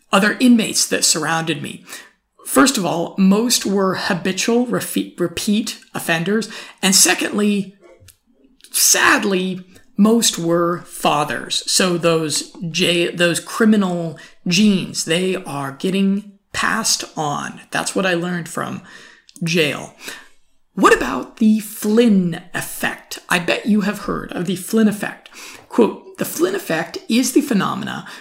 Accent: American